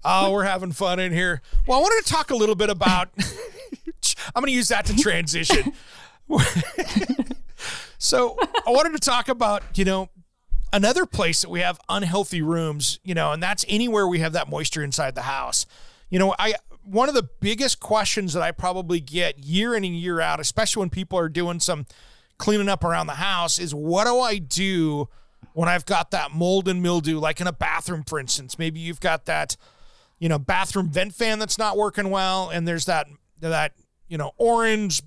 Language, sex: English, male